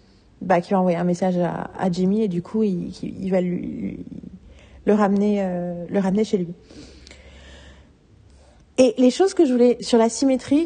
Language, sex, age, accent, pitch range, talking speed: French, female, 30-49, French, 200-250 Hz, 190 wpm